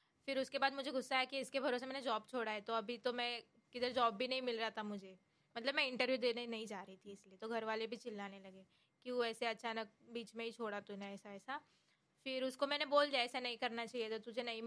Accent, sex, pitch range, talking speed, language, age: native, female, 225-270 Hz, 260 wpm, Hindi, 20-39